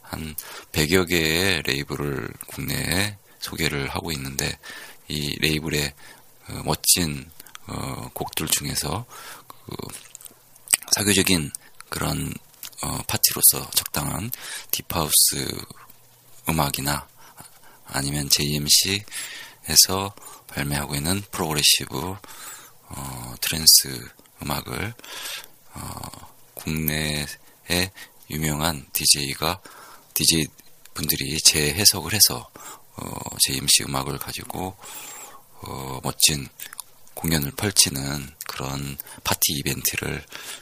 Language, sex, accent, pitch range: Korean, male, native, 70-95 Hz